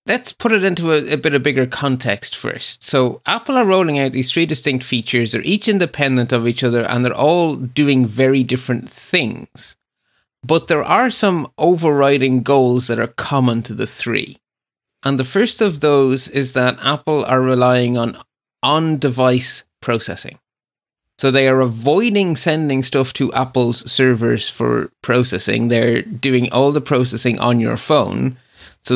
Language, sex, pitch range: English, male, 120-150 Hz